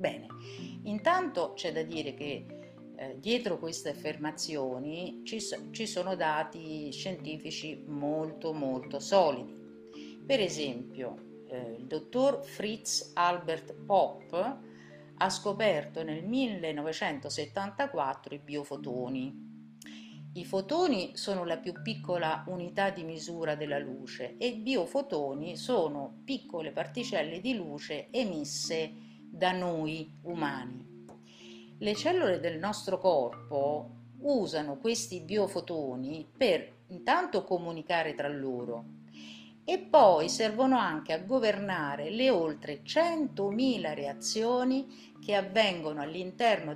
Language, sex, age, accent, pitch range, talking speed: Italian, female, 50-69, native, 135-200 Hz, 105 wpm